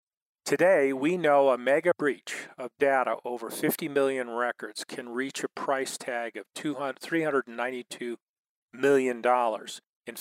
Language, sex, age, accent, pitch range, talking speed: English, male, 40-59, American, 120-150 Hz, 125 wpm